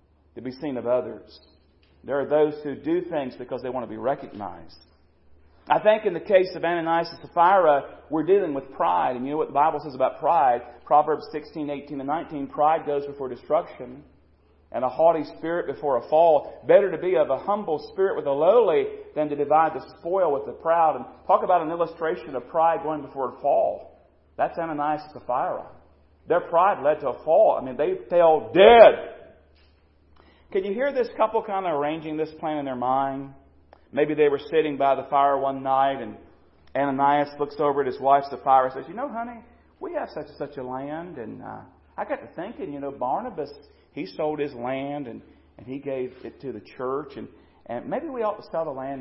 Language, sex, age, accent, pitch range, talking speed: English, male, 40-59, American, 125-160 Hz, 210 wpm